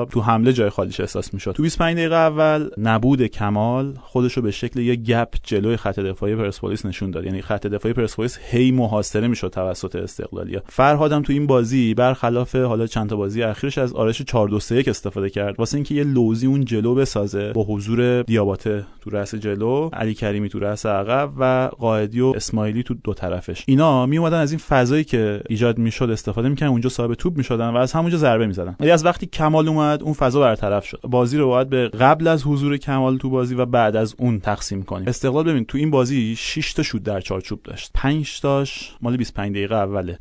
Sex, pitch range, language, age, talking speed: male, 105-130 Hz, Persian, 30-49, 200 wpm